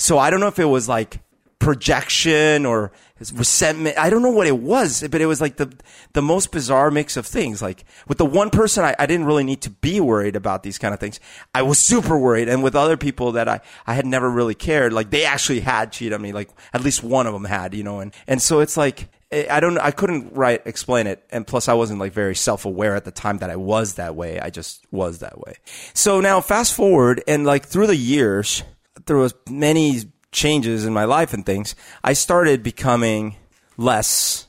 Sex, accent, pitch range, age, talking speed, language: male, American, 110-155 Hz, 30-49, 230 wpm, English